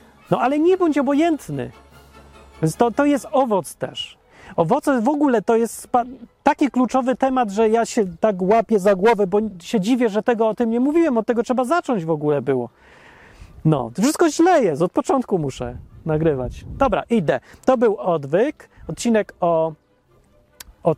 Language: Polish